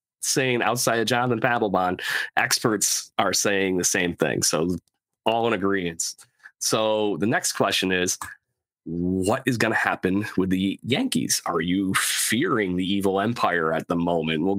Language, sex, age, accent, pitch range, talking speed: English, male, 30-49, American, 95-130 Hz, 155 wpm